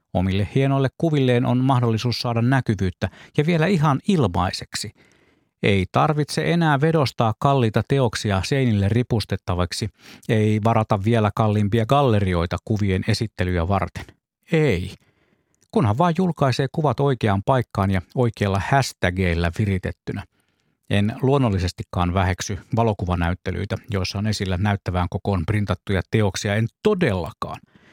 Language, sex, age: Finnish, male, 50-69